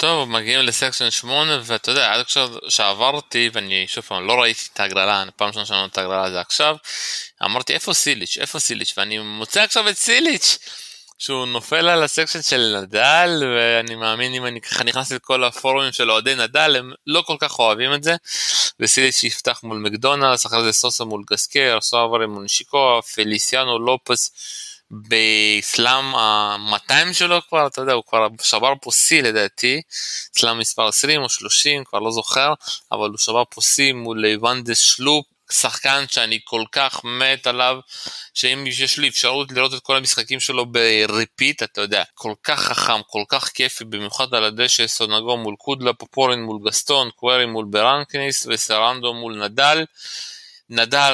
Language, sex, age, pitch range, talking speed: Hebrew, male, 20-39, 110-135 Hz, 165 wpm